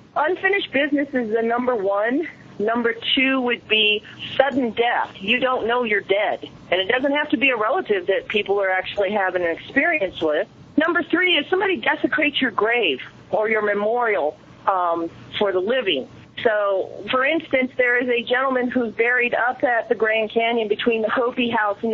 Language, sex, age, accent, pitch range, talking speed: English, female, 40-59, American, 210-255 Hz, 180 wpm